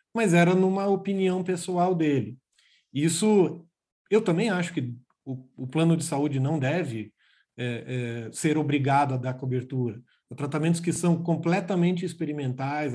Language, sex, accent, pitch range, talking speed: Portuguese, male, Brazilian, 140-180 Hz, 145 wpm